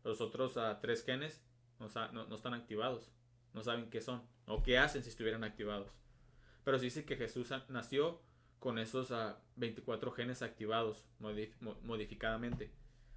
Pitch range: 115-130 Hz